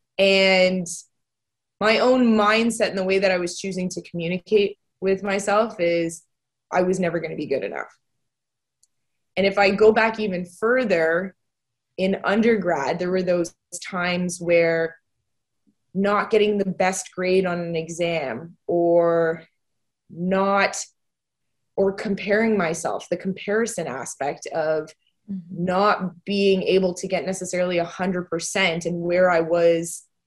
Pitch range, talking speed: 170-200 Hz, 130 wpm